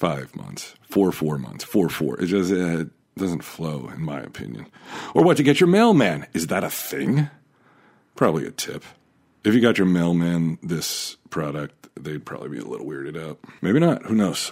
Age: 50-69